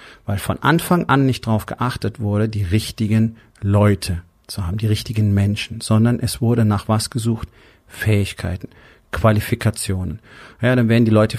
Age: 40-59